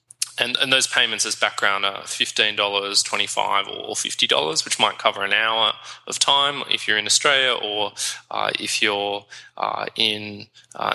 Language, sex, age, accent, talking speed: English, male, 20-39, Australian, 160 wpm